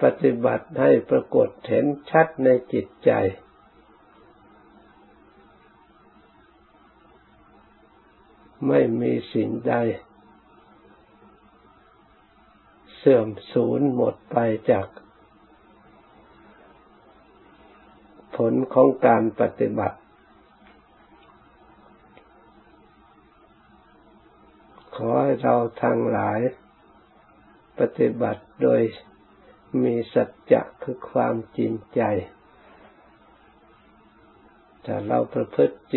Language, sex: Thai, male